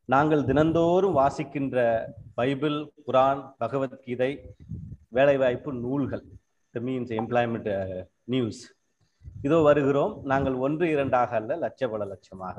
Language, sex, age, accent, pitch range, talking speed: Tamil, male, 30-49, native, 120-165 Hz, 95 wpm